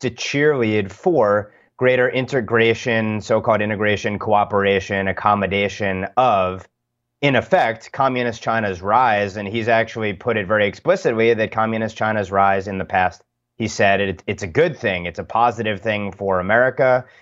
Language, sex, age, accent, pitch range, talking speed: English, male, 30-49, American, 100-115 Hz, 145 wpm